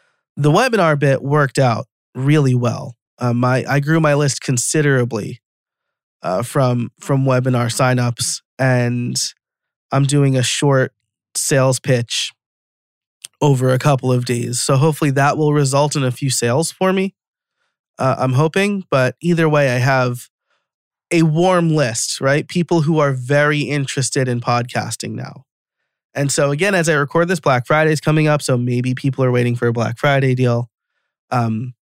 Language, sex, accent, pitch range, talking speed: English, male, American, 125-155 Hz, 160 wpm